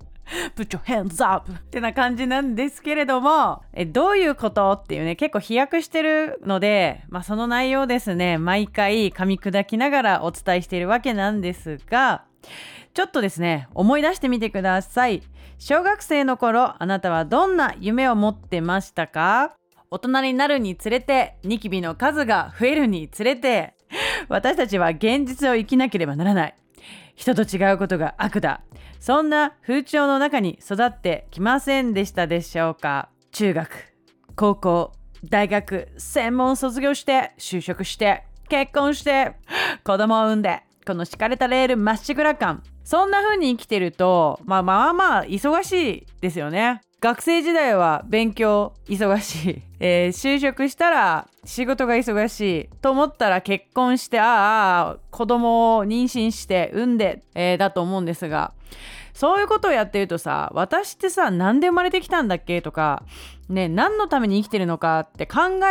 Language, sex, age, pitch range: Japanese, female, 30-49, 185-270 Hz